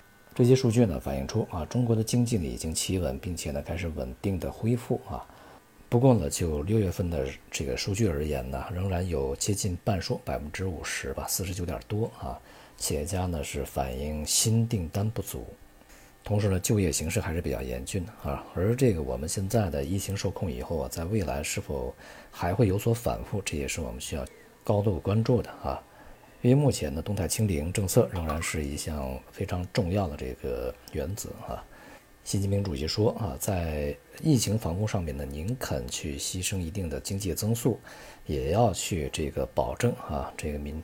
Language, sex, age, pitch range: Chinese, male, 50-69, 75-110 Hz